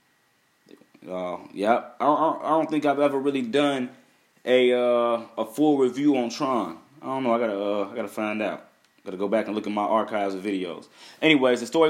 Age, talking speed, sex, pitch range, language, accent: 20-39, 210 wpm, male, 110-140 Hz, English, American